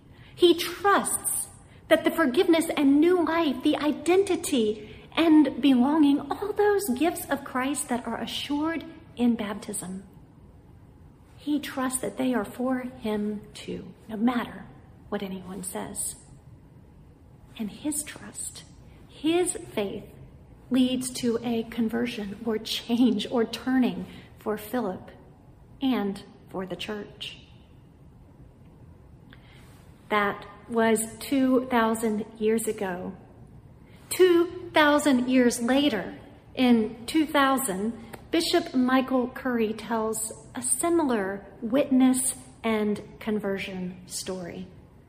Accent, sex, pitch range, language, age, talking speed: American, female, 215-290 Hz, English, 50-69, 100 wpm